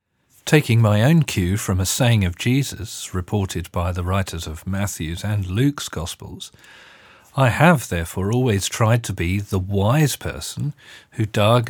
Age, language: 40-59, English